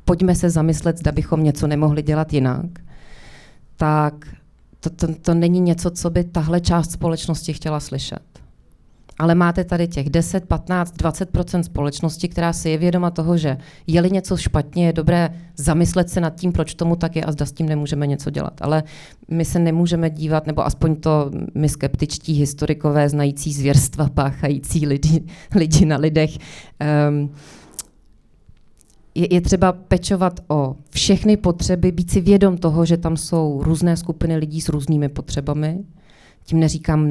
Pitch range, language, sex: 150-170 Hz, Slovak, female